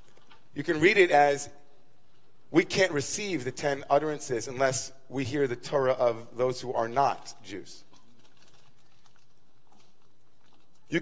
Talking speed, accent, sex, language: 125 wpm, American, male, English